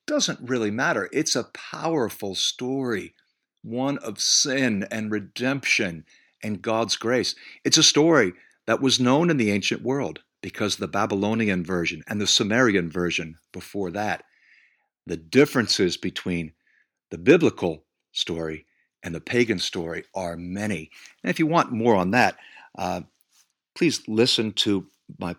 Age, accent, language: 50-69, American, English